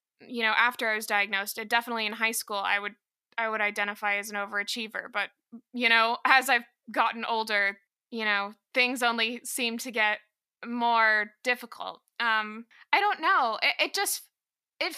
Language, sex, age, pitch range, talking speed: English, female, 20-39, 220-265 Hz, 170 wpm